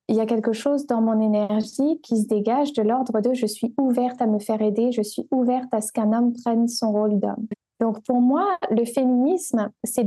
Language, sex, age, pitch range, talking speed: French, female, 20-39, 220-260 Hz, 240 wpm